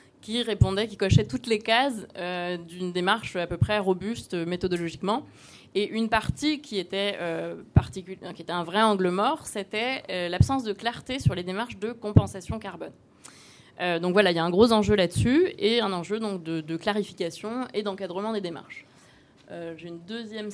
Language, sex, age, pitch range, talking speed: French, female, 20-39, 175-215 Hz, 185 wpm